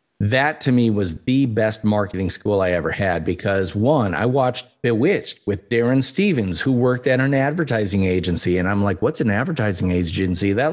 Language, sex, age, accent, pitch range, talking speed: English, male, 30-49, American, 100-155 Hz, 185 wpm